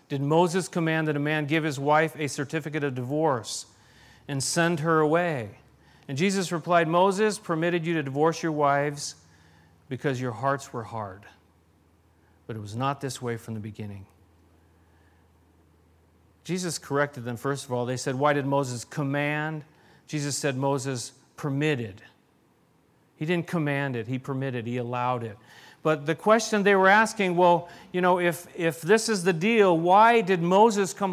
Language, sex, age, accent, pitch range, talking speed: English, male, 40-59, American, 140-205 Hz, 165 wpm